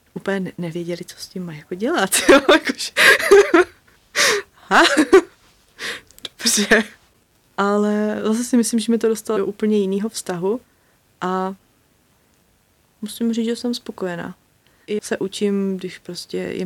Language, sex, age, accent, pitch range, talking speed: Czech, female, 20-39, native, 175-205 Hz, 120 wpm